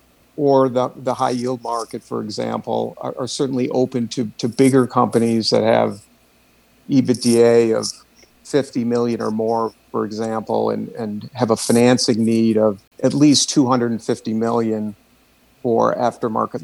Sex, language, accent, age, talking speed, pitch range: male, English, American, 50-69, 140 wpm, 115-130 Hz